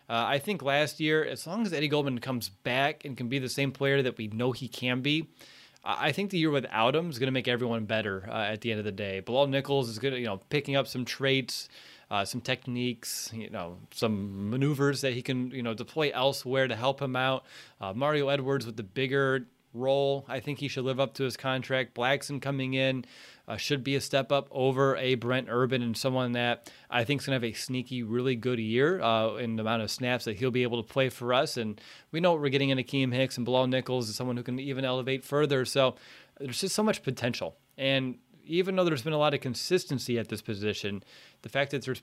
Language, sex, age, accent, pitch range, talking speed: English, male, 30-49, American, 120-140 Hz, 245 wpm